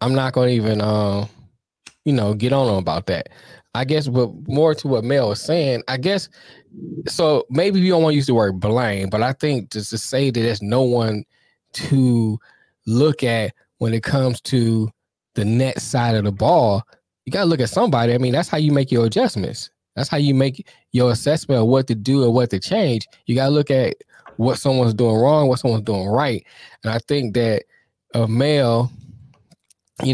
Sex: male